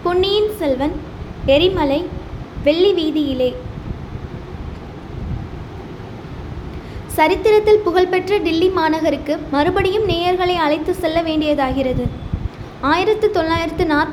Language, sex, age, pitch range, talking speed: English, female, 20-39, 300-365 Hz, 115 wpm